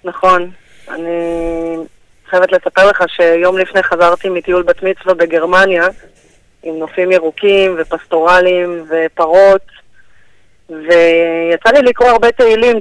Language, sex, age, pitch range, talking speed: Hebrew, female, 20-39, 175-210 Hz, 105 wpm